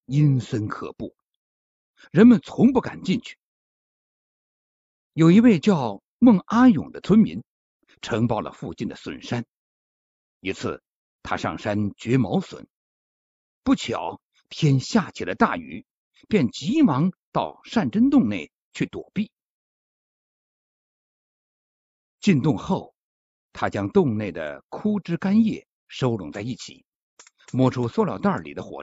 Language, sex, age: Chinese, male, 60-79